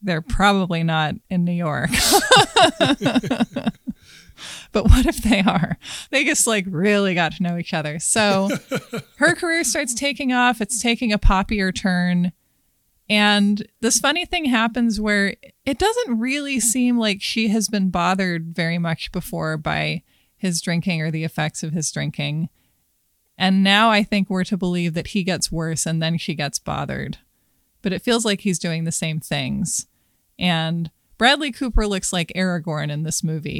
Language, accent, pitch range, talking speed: English, American, 170-210 Hz, 165 wpm